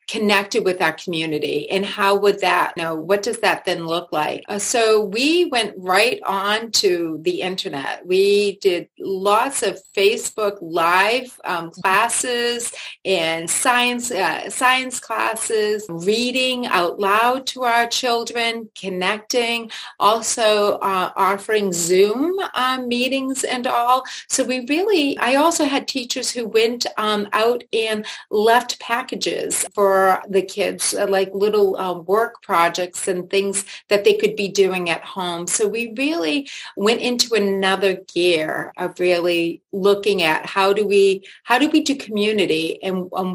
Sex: female